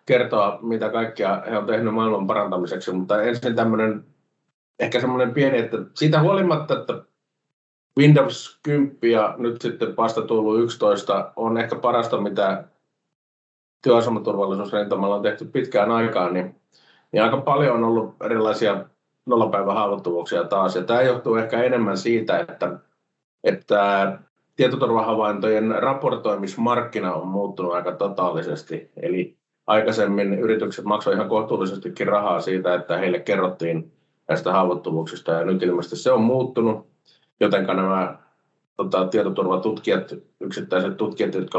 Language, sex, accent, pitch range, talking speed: Finnish, male, native, 95-115 Hz, 120 wpm